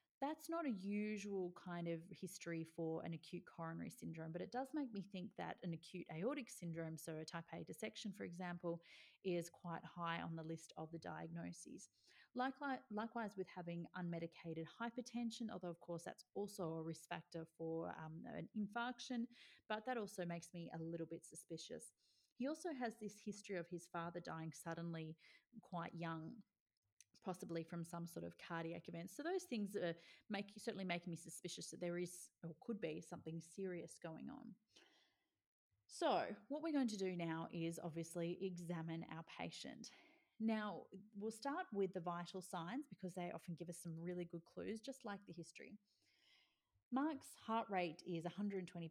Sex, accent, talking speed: female, Australian, 175 wpm